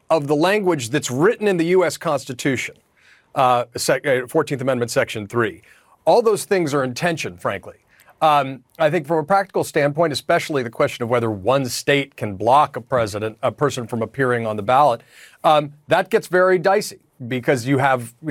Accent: American